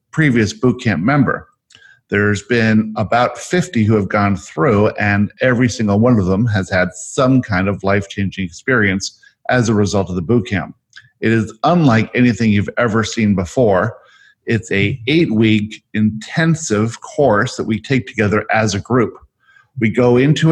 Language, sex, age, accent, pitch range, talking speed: English, male, 50-69, American, 105-130 Hz, 160 wpm